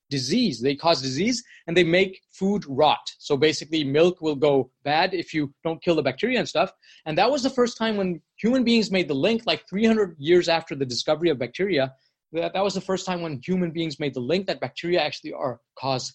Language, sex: English, male